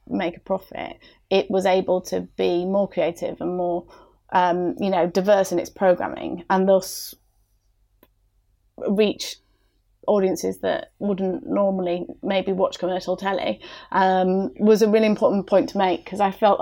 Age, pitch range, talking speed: 20-39, 180-205 Hz, 150 wpm